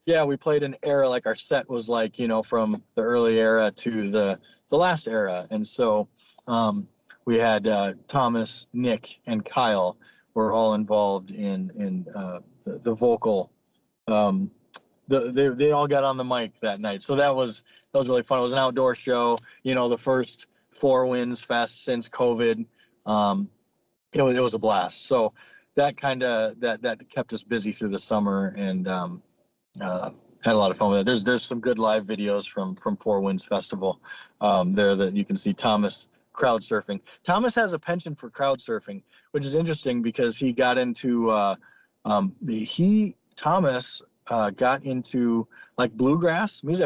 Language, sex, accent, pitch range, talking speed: English, male, American, 105-135 Hz, 185 wpm